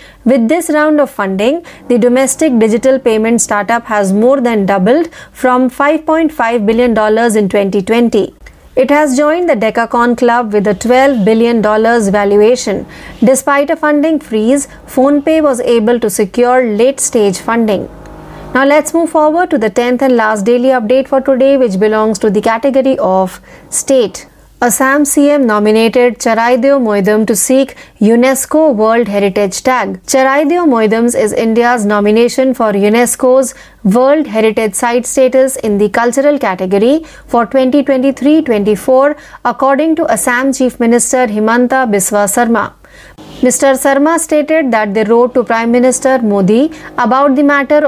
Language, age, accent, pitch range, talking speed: Marathi, 30-49, native, 220-275 Hz, 140 wpm